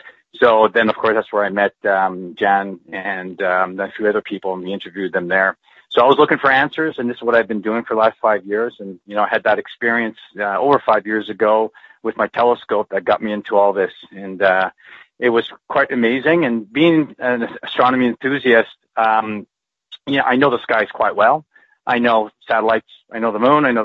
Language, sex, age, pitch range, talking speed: English, male, 40-59, 105-125 Hz, 225 wpm